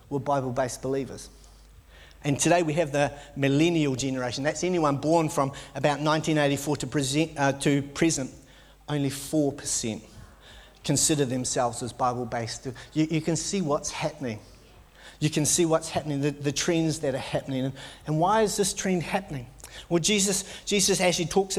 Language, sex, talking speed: English, male, 150 wpm